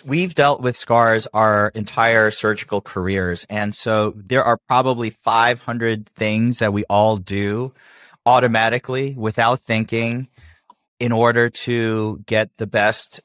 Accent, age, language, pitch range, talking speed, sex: American, 30-49, English, 105-125 Hz, 125 wpm, male